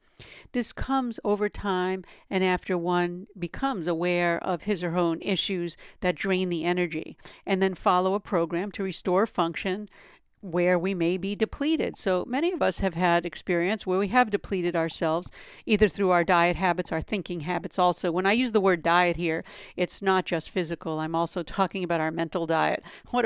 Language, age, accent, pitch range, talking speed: English, 50-69, American, 175-205 Hz, 185 wpm